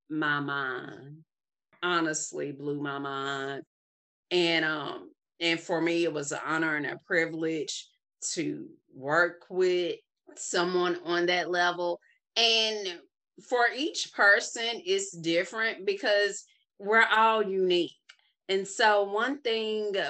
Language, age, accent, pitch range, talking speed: English, 30-49, American, 155-200 Hz, 115 wpm